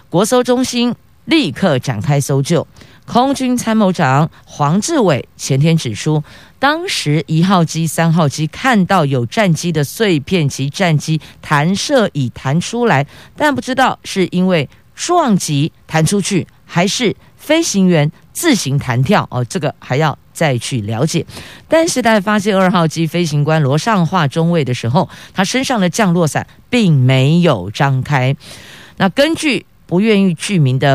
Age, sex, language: 50-69, female, Chinese